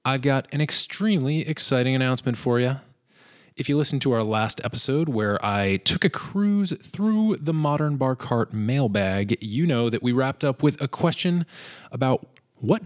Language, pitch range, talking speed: English, 110-145 Hz, 175 wpm